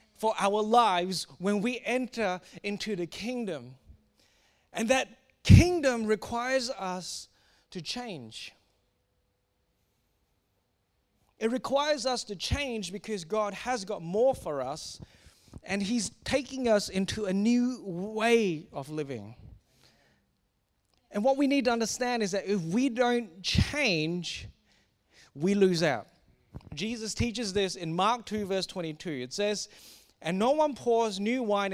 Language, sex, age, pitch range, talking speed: English, male, 30-49, 165-220 Hz, 130 wpm